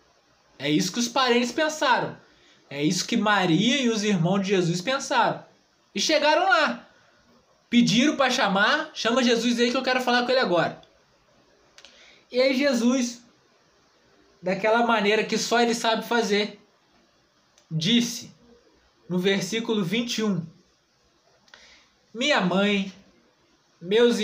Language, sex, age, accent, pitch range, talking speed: Portuguese, male, 20-39, Brazilian, 190-245 Hz, 120 wpm